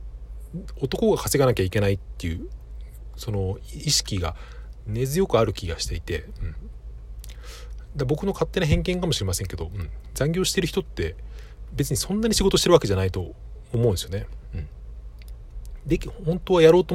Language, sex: Japanese, male